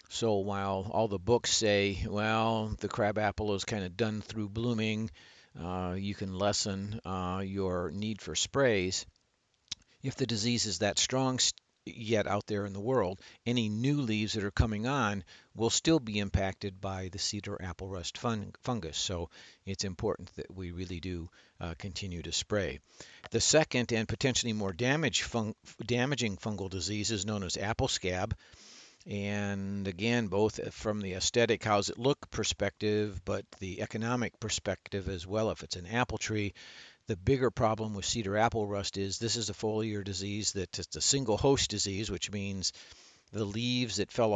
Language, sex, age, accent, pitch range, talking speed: English, male, 50-69, American, 95-115 Hz, 165 wpm